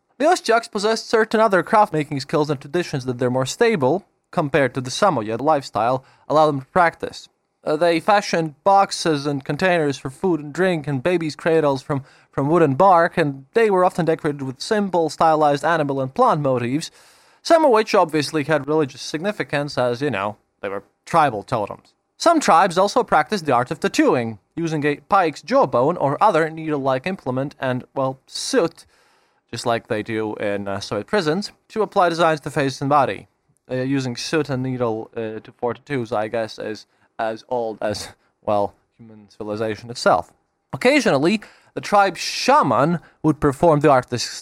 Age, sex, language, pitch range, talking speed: 20-39, male, English, 130-180 Hz, 175 wpm